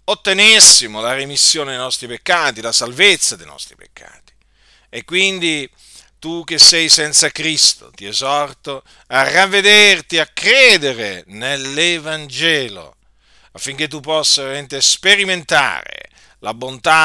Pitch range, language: 135-180 Hz, Italian